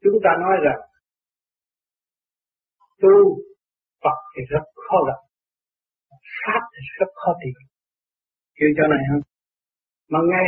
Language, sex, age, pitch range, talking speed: Vietnamese, male, 60-79, 140-230 Hz, 120 wpm